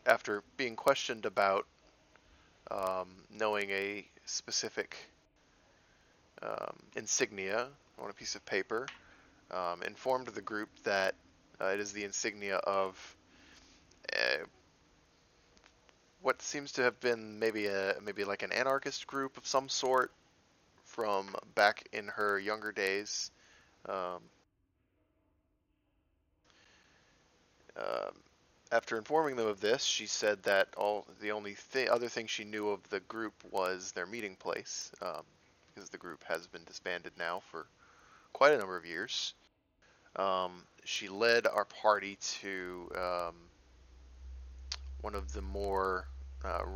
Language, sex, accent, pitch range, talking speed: English, male, American, 85-110 Hz, 130 wpm